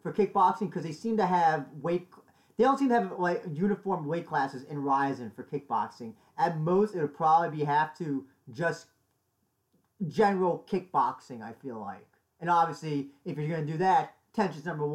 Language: English